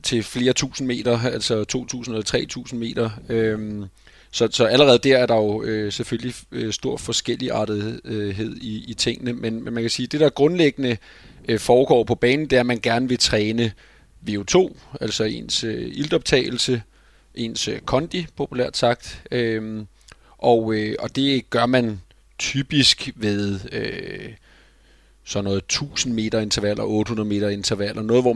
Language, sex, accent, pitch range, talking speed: Danish, male, native, 105-125 Hz, 130 wpm